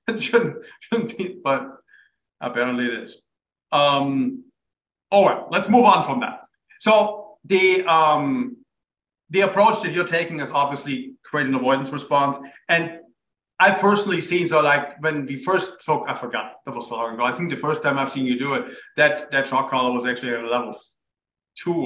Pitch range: 125-175 Hz